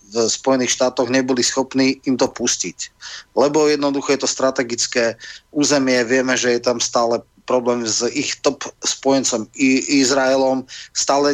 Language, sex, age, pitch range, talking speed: Slovak, male, 30-49, 125-140 Hz, 140 wpm